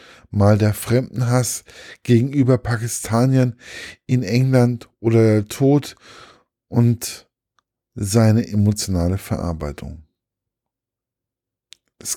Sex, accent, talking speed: male, German, 75 wpm